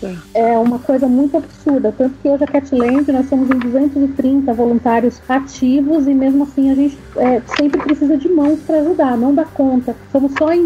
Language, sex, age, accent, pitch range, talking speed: Portuguese, female, 40-59, Brazilian, 240-290 Hz, 190 wpm